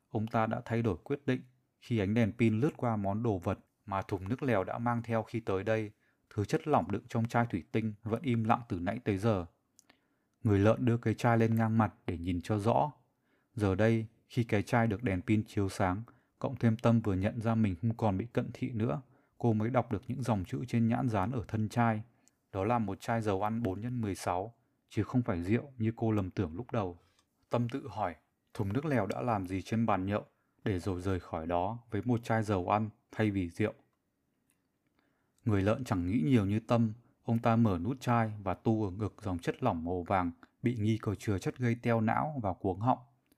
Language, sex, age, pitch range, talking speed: Vietnamese, male, 20-39, 100-120 Hz, 230 wpm